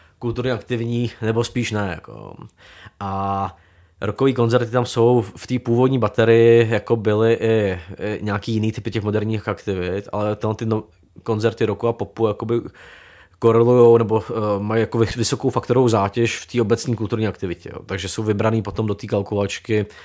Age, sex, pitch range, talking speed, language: 20-39, male, 100-115 Hz, 155 wpm, Czech